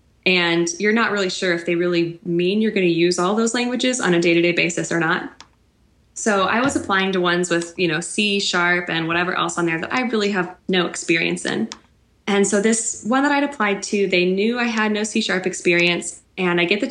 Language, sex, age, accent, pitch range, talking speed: English, female, 20-39, American, 175-210 Hz, 230 wpm